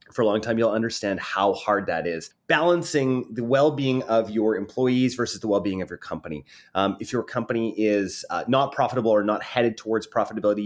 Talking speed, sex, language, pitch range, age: 195 wpm, male, English, 100-140 Hz, 30-49